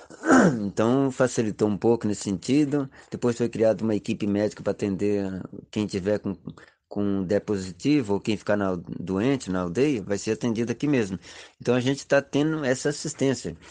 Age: 20-39